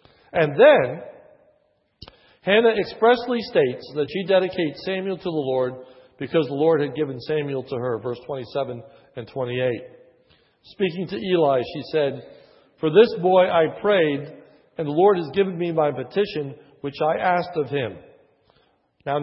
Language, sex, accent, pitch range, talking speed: English, male, American, 145-190 Hz, 150 wpm